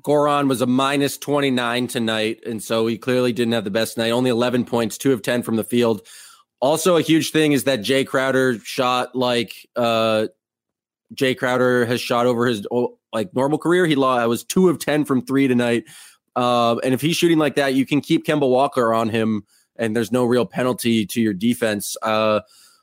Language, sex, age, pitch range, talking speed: English, male, 20-39, 115-140 Hz, 200 wpm